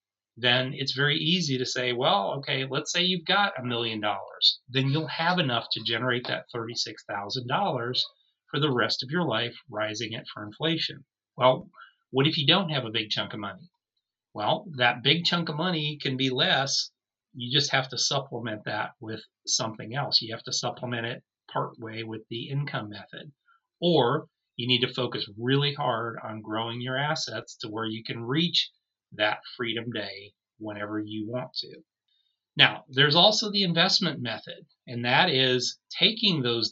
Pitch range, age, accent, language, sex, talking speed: 115-150 Hz, 30-49, American, English, male, 175 wpm